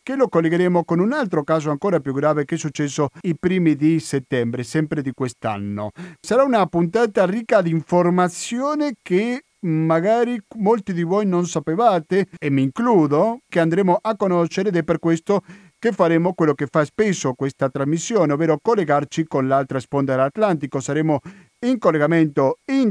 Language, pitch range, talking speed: Italian, 145-195 Hz, 160 wpm